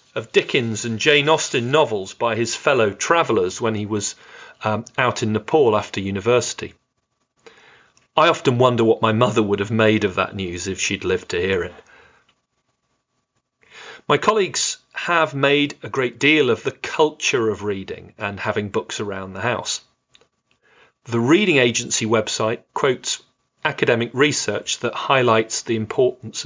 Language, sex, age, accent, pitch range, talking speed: English, male, 40-59, British, 105-140 Hz, 150 wpm